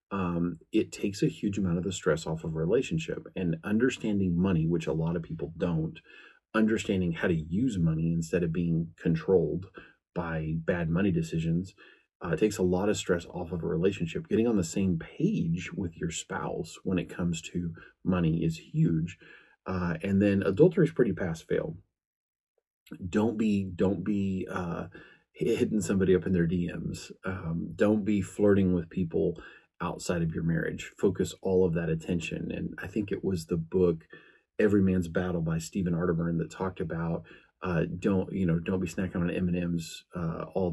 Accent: American